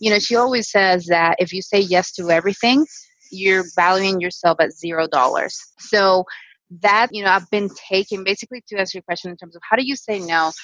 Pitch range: 160-190 Hz